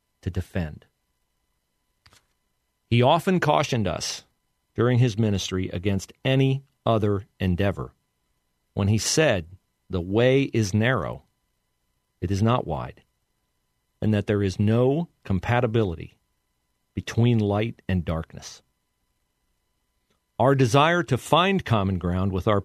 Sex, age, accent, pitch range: male, 50-69, American, 80-125 Hz